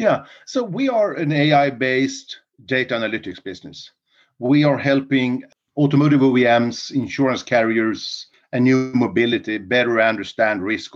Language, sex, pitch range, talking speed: English, male, 120-140 Hz, 120 wpm